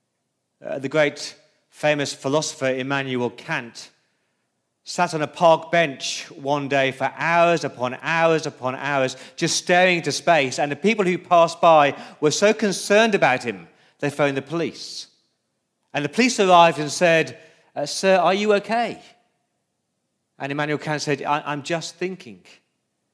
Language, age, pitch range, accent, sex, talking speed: English, 40-59, 140-170 Hz, British, male, 145 wpm